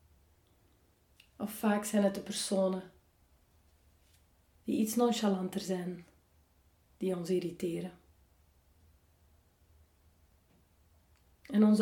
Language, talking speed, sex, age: Dutch, 75 wpm, female, 30-49